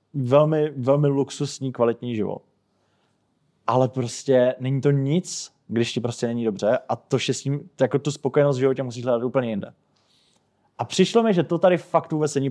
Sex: male